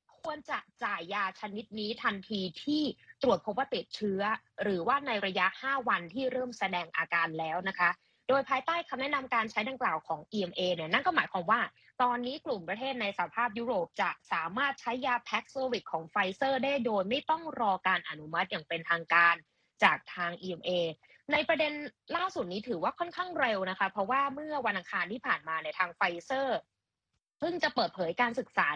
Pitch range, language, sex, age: 180-260 Hz, Thai, female, 20-39